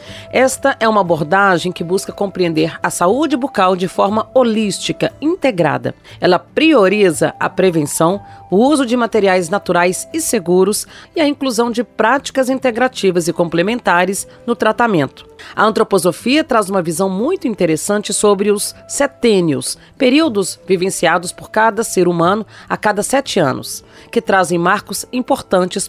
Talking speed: 135 wpm